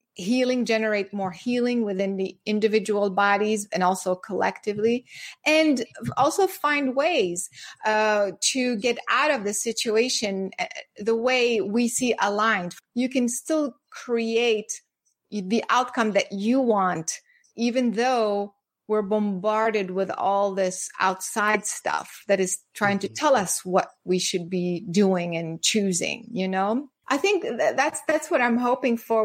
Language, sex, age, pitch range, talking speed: English, female, 30-49, 205-245 Hz, 140 wpm